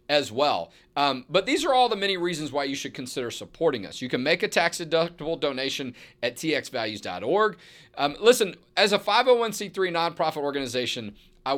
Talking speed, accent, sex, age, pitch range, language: 160 wpm, American, male, 40-59, 140-165 Hz, English